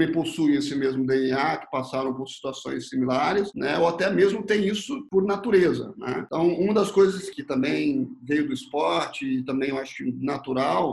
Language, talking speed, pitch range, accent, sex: Portuguese, 175 wpm, 150-205 Hz, Brazilian, male